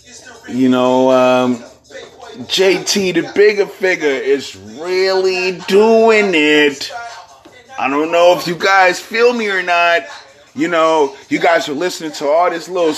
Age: 30-49